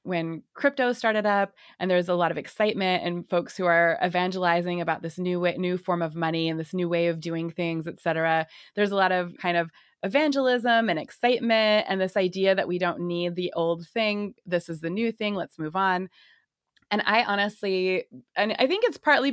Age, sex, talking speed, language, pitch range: 20-39, female, 205 wpm, English, 175-215 Hz